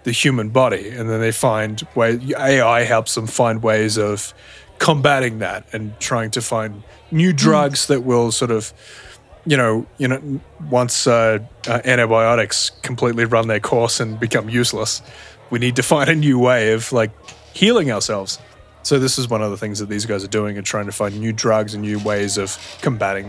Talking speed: 195 wpm